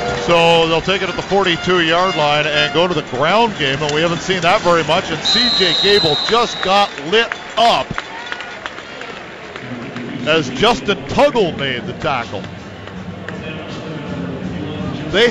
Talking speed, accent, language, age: 135 wpm, American, English, 50-69